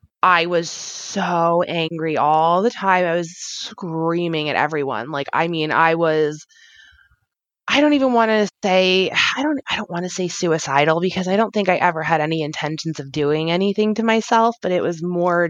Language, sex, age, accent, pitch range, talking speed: English, female, 20-39, American, 160-190 Hz, 190 wpm